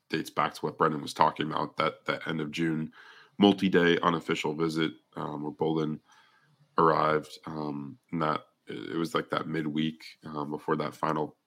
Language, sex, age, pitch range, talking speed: English, male, 20-39, 75-85 Hz, 175 wpm